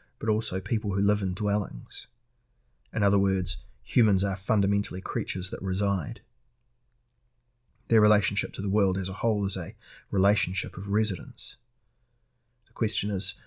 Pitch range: 100-115 Hz